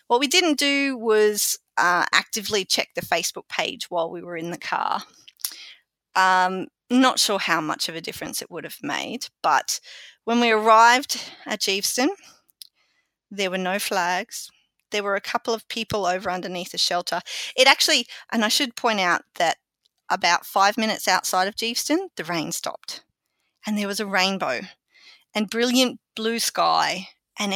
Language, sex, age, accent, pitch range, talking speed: English, female, 30-49, Australian, 180-240 Hz, 165 wpm